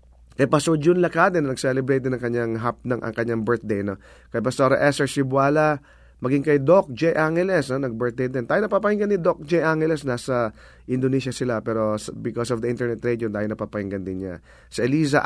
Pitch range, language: 125-160 Hz, English